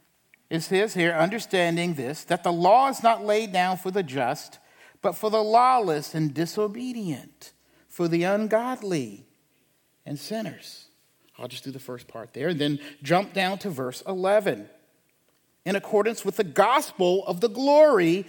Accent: American